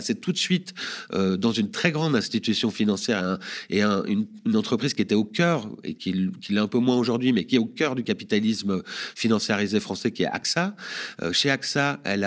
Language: French